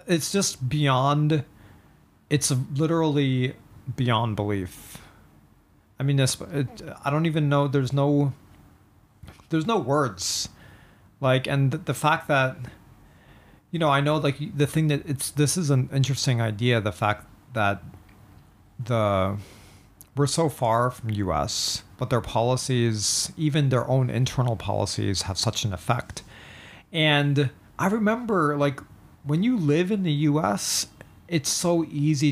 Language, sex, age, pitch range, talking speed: English, male, 40-59, 105-145 Hz, 135 wpm